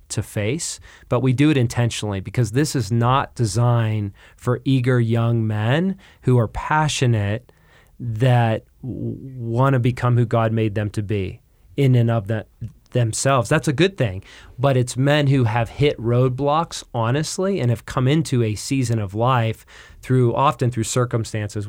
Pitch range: 110-130 Hz